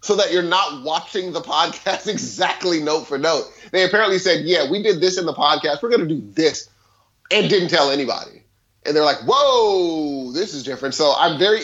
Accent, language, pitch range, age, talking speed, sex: American, English, 150-230 Hz, 30-49, 205 wpm, male